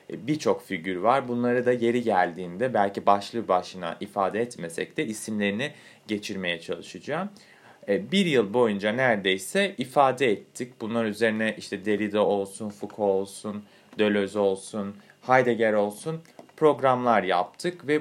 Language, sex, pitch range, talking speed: Turkish, male, 100-145 Hz, 120 wpm